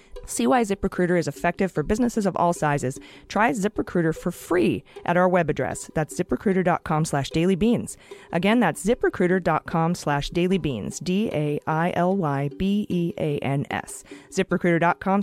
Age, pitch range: 30-49, 150-200 Hz